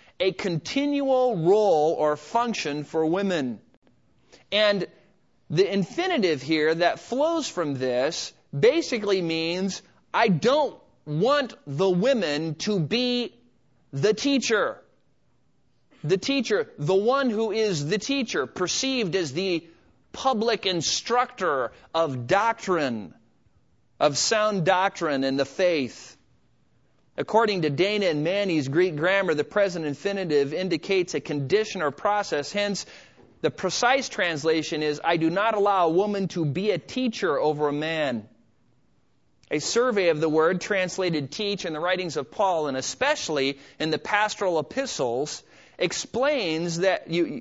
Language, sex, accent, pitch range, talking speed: English, male, American, 160-220 Hz, 130 wpm